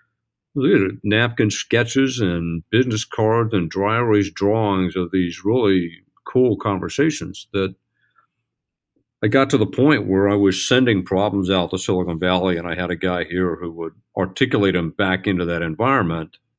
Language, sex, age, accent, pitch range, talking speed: English, male, 50-69, American, 90-115 Hz, 155 wpm